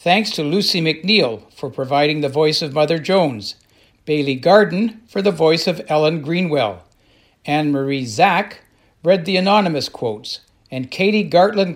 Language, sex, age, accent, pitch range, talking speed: English, male, 60-79, American, 135-175 Hz, 150 wpm